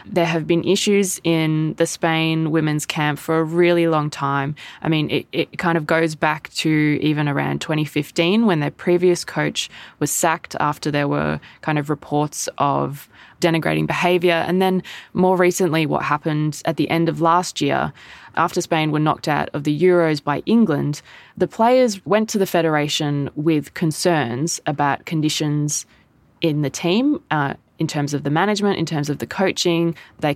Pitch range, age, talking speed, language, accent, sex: 150-175 Hz, 20-39, 175 wpm, English, Australian, female